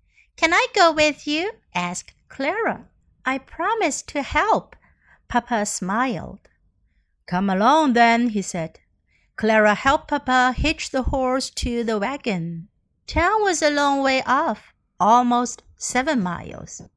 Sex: female